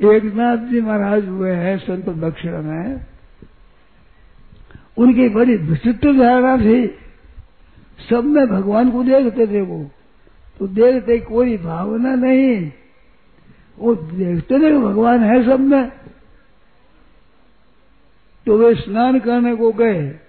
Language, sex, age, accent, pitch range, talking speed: Hindi, male, 60-79, native, 190-235 Hz, 115 wpm